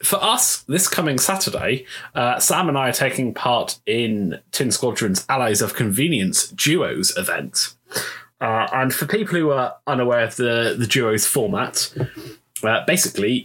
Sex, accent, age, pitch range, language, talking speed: male, British, 20-39, 120-165 Hz, English, 150 wpm